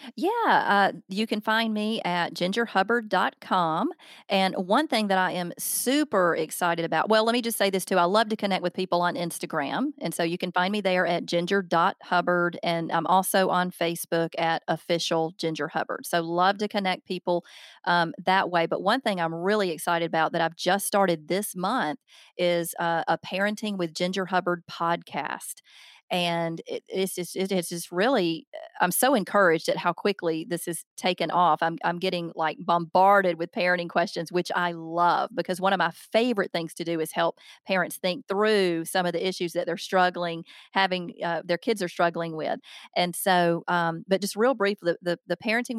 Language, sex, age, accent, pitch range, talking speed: English, female, 30-49, American, 170-200 Hz, 190 wpm